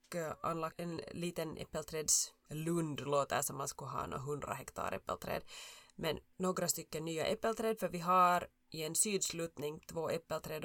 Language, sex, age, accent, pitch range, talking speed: Swedish, female, 20-39, Finnish, 155-190 Hz, 145 wpm